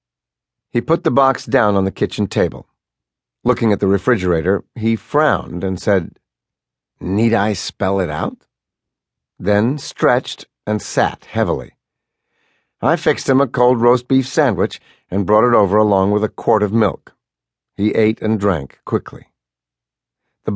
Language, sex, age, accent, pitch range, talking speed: English, male, 50-69, American, 95-125 Hz, 150 wpm